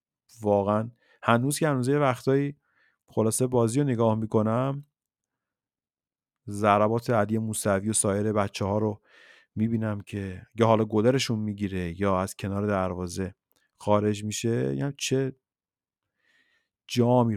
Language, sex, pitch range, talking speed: Persian, male, 110-150 Hz, 115 wpm